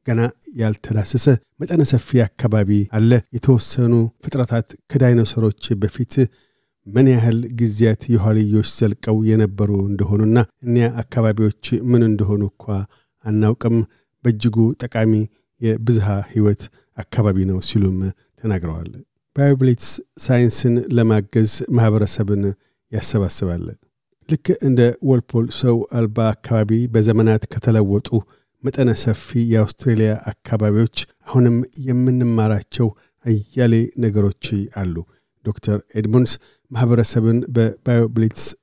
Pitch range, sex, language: 105-120 Hz, male, Amharic